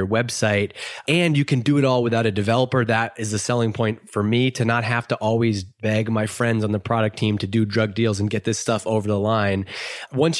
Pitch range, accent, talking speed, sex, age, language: 110-130 Hz, American, 240 wpm, male, 30-49, English